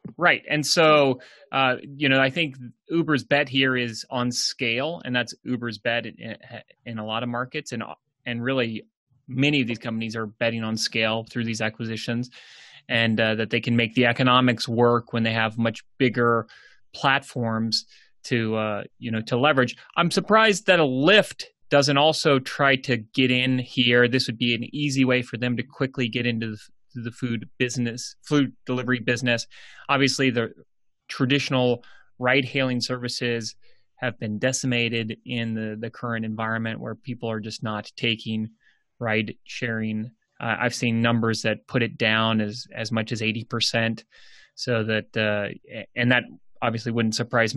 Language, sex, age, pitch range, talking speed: English, male, 30-49, 115-130 Hz, 165 wpm